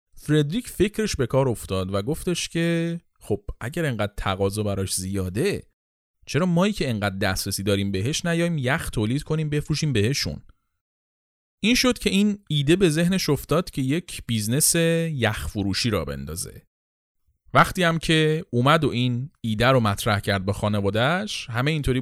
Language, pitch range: Persian, 105-150 Hz